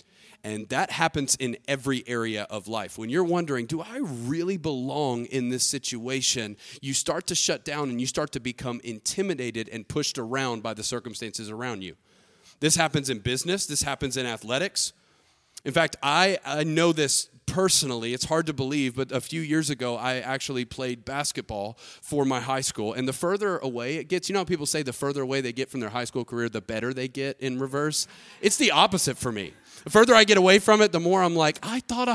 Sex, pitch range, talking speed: male, 125-175 Hz, 215 wpm